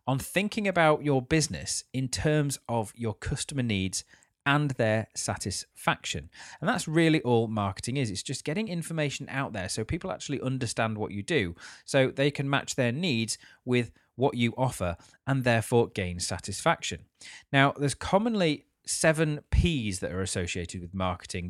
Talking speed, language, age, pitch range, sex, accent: 160 wpm, English, 30-49, 105-145 Hz, male, British